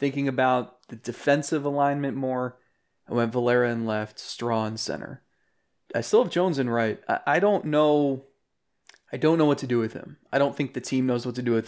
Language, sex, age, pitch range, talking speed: English, male, 30-49, 120-140 Hz, 210 wpm